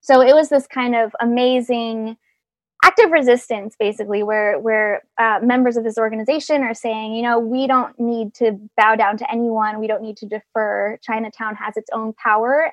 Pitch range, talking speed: 225-270 Hz, 185 wpm